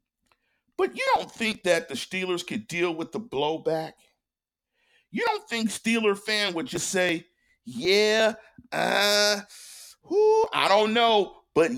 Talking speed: 140 wpm